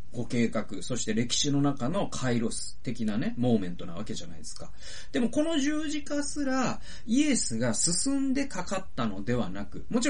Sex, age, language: male, 30-49, Japanese